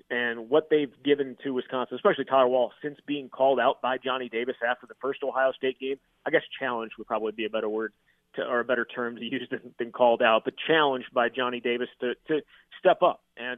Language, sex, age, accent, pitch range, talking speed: English, male, 30-49, American, 125-150 Hz, 225 wpm